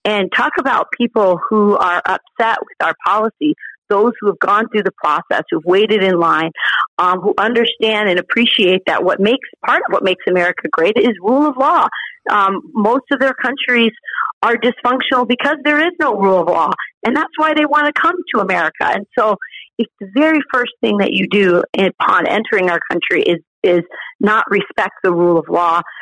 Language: English